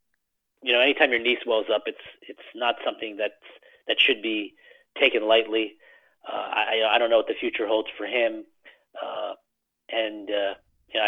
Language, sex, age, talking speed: English, male, 30-49, 180 wpm